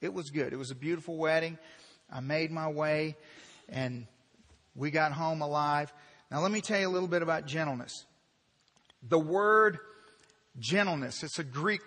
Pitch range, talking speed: 170-215 Hz, 165 wpm